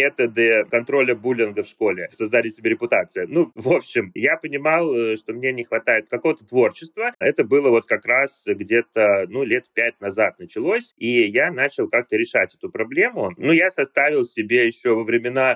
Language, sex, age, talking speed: Russian, male, 30-49, 170 wpm